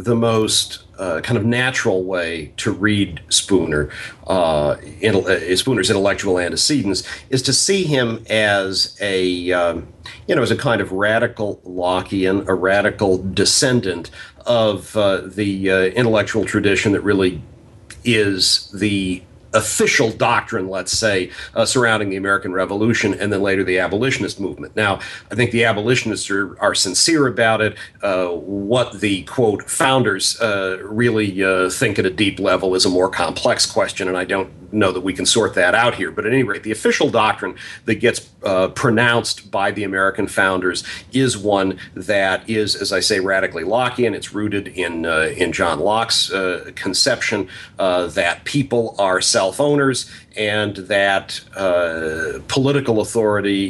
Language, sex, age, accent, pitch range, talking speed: English, male, 50-69, American, 95-110 Hz, 160 wpm